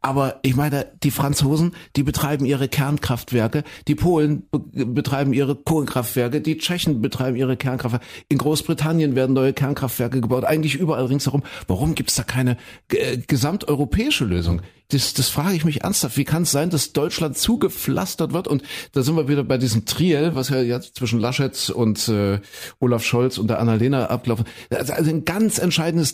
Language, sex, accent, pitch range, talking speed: German, male, German, 110-145 Hz, 175 wpm